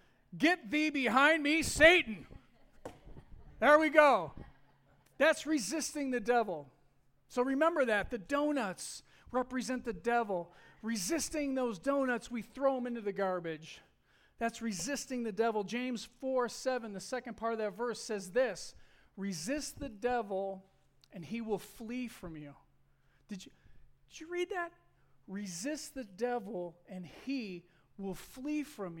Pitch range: 190-260 Hz